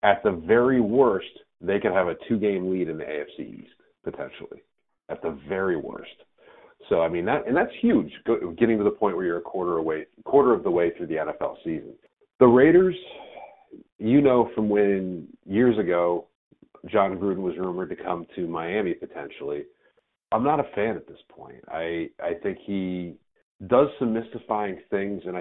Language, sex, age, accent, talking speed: English, male, 40-59, American, 180 wpm